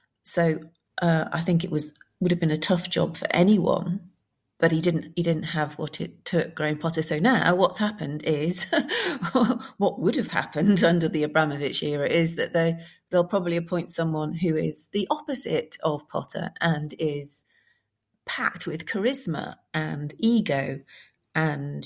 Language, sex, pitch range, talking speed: English, female, 150-175 Hz, 160 wpm